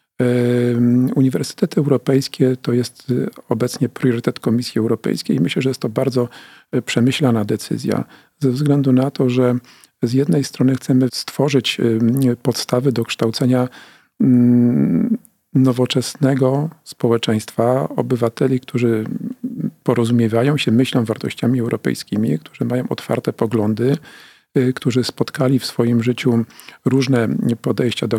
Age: 40-59